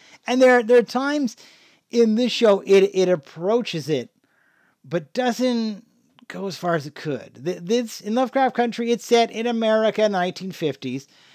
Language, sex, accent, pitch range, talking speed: English, male, American, 185-250 Hz, 155 wpm